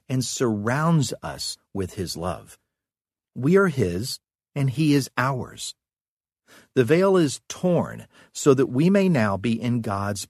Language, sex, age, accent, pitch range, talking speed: English, male, 50-69, American, 105-150 Hz, 145 wpm